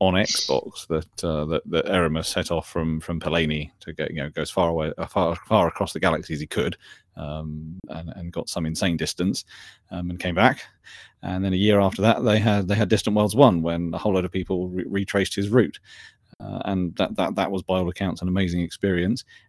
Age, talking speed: 30-49, 220 wpm